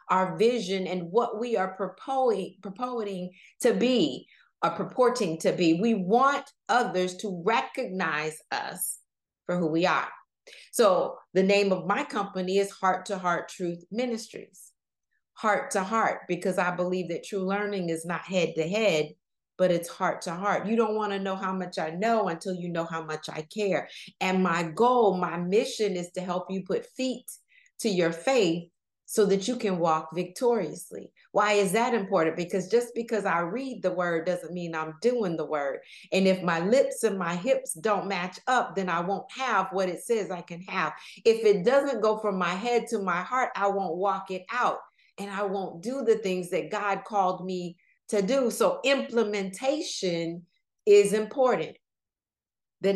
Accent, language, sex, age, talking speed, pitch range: American, English, female, 40-59, 180 wpm, 175-230 Hz